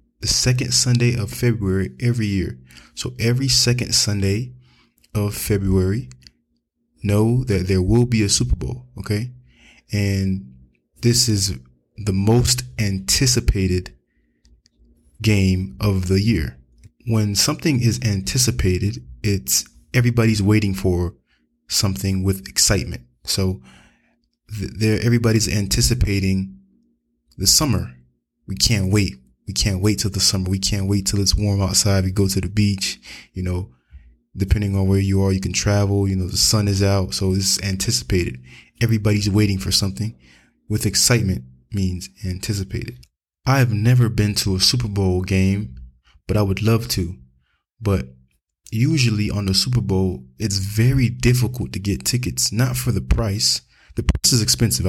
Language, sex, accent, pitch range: English, male, American, 90-110 Hz